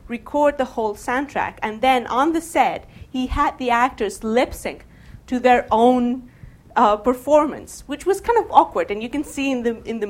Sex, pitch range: female, 210-255 Hz